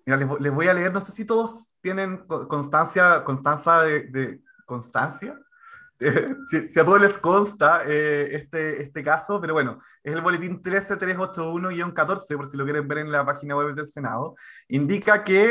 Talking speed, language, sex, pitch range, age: 175 wpm, Spanish, male, 145-195 Hz, 30-49